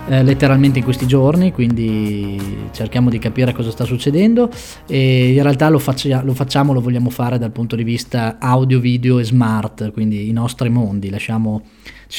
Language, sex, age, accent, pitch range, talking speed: Italian, male, 20-39, native, 115-145 Hz, 170 wpm